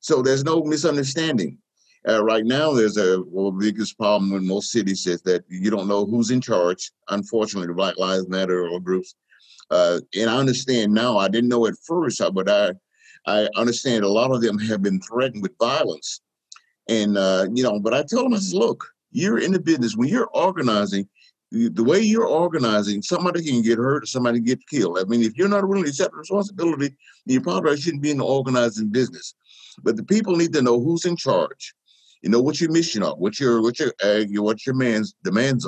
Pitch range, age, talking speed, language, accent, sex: 105-150 Hz, 50-69, 205 wpm, English, American, male